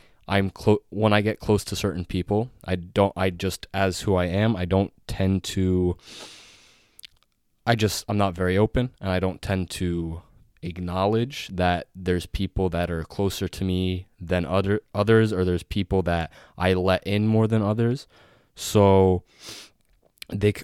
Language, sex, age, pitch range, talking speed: English, male, 20-39, 90-105 Hz, 165 wpm